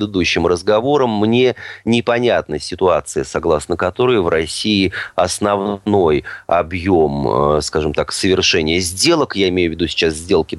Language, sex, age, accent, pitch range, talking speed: Russian, male, 30-49, native, 80-110 Hz, 120 wpm